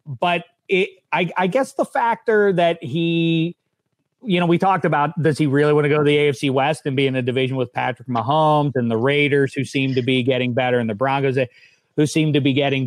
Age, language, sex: 40-59, English, male